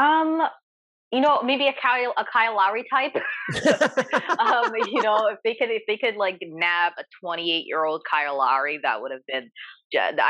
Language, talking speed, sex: English, 180 wpm, female